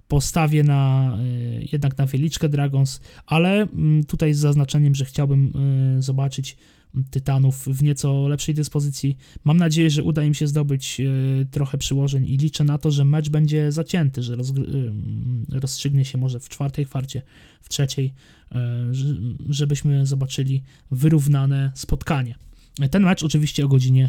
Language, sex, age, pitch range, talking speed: Polish, male, 20-39, 130-150 Hz, 125 wpm